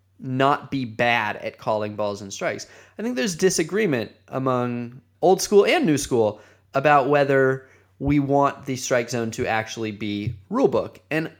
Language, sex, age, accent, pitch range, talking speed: English, male, 20-39, American, 120-165 Hz, 165 wpm